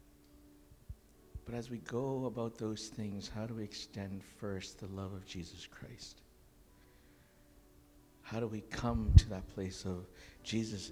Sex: male